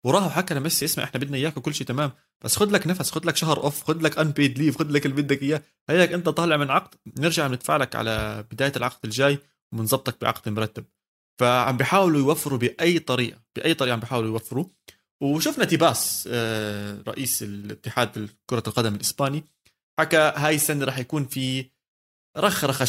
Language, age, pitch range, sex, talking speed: Arabic, 20-39, 115-160 Hz, male, 175 wpm